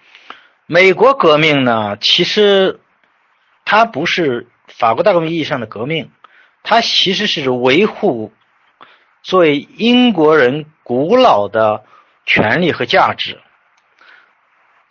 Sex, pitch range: male, 130-195 Hz